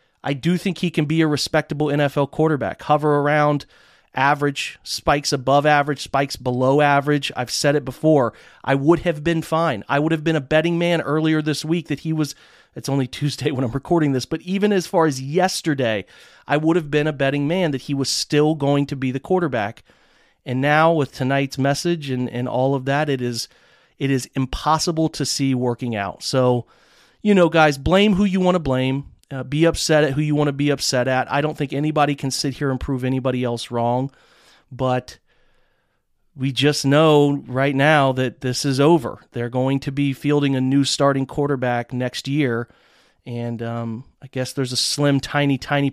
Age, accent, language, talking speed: 30-49, American, English, 200 wpm